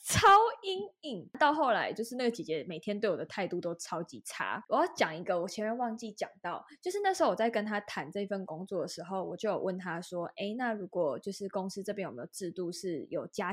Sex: female